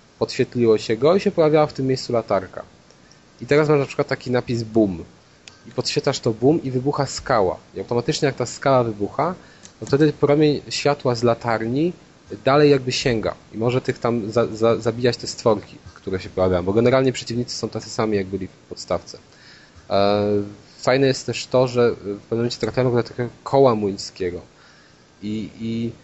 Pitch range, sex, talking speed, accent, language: 105-130 Hz, male, 170 wpm, native, Polish